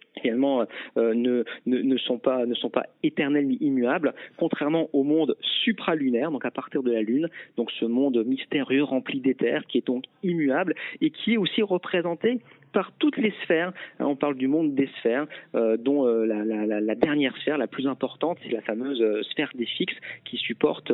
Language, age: French, 40-59